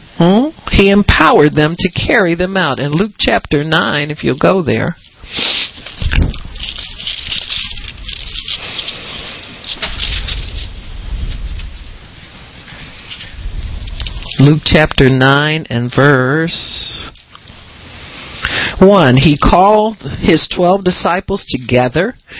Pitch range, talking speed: 150-220 Hz, 75 wpm